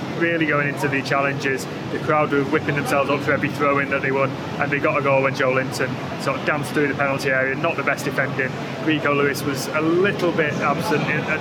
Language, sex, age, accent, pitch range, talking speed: English, male, 20-39, British, 135-150 Hz, 230 wpm